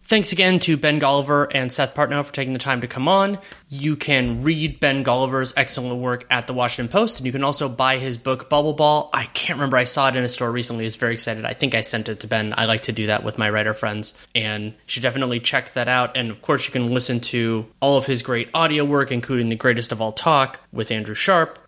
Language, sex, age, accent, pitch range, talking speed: English, male, 20-39, American, 115-140 Hz, 260 wpm